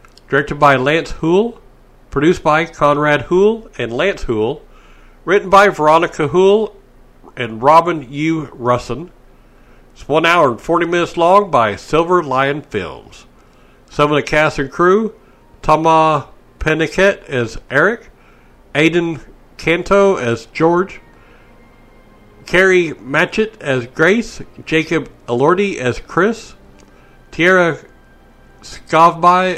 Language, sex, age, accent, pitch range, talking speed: English, male, 60-79, American, 125-180 Hz, 110 wpm